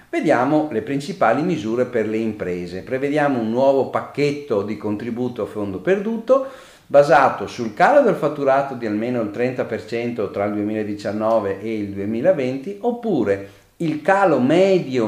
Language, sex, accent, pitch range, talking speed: Italian, male, native, 110-160 Hz, 140 wpm